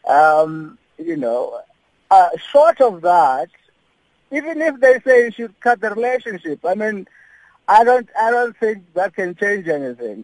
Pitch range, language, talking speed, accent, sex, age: 145-215 Hz, English, 160 wpm, Indian, male, 50-69